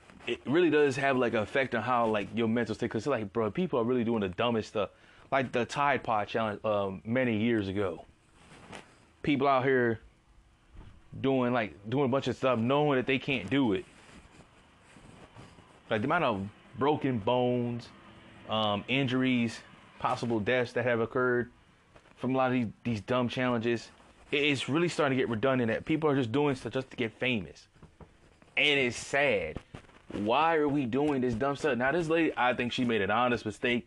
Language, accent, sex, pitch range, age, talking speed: English, American, male, 115-145 Hz, 20-39, 185 wpm